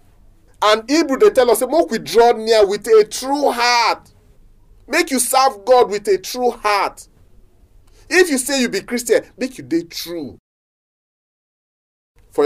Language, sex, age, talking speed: English, male, 40-59, 155 wpm